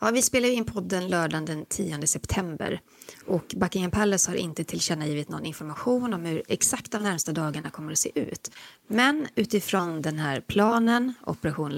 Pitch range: 155-215 Hz